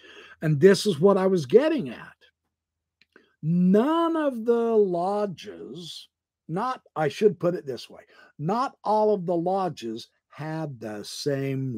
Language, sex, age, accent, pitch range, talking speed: English, male, 60-79, American, 170-255 Hz, 140 wpm